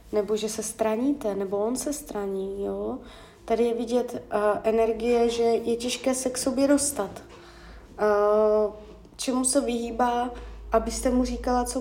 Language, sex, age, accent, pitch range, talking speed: Czech, female, 20-39, native, 215-250 Hz, 135 wpm